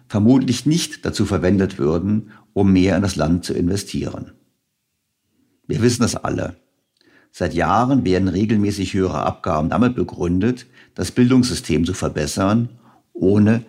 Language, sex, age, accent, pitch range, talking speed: German, male, 50-69, German, 90-115 Hz, 125 wpm